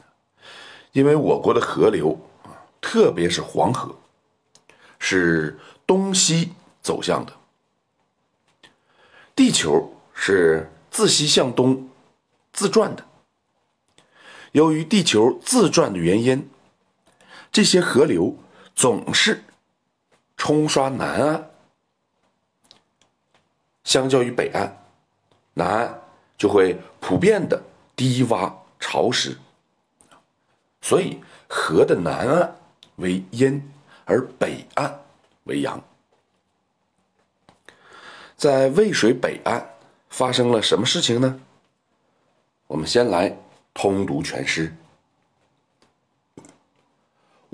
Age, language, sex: 50-69, Chinese, male